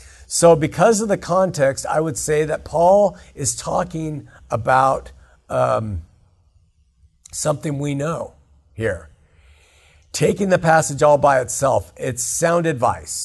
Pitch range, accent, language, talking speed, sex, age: 95-155 Hz, American, English, 120 wpm, male, 50-69